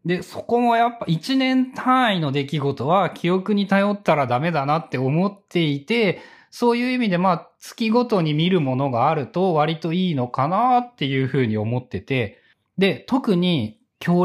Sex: male